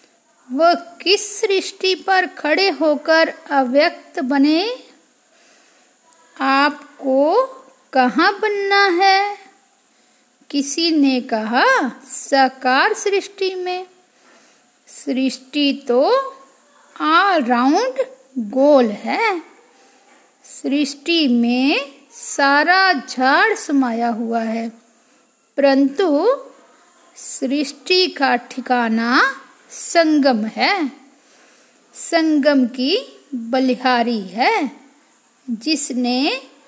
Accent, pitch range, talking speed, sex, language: native, 255-340 Hz, 60 wpm, female, Hindi